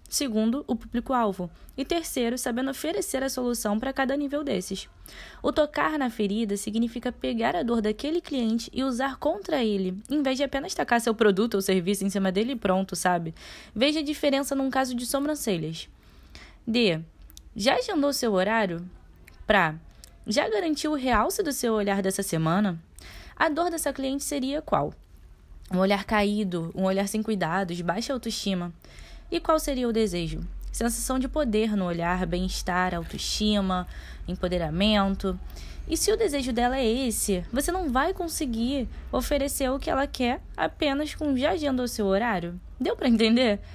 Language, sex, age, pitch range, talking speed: Portuguese, female, 10-29, 200-280 Hz, 160 wpm